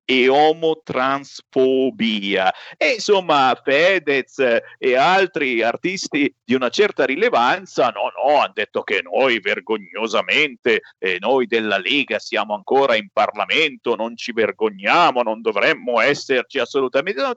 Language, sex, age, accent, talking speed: Italian, male, 50-69, native, 125 wpm